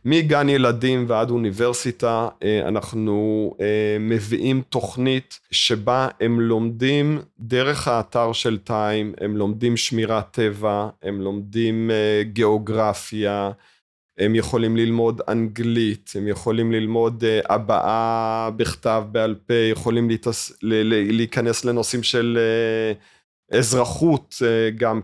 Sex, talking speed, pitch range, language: male, 90 wpm, 105-120 Hz, Hebrew